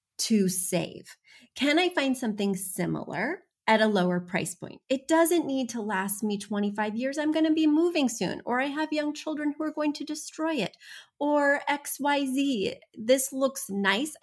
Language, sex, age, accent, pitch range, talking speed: English, female, 30-49, American, 190-275 Hz, 175 wpm